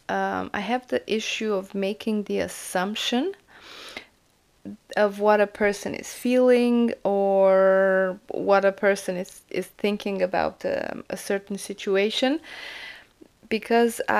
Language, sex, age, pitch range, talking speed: English, female, 20-39, 185-210 Hz, 120 wpm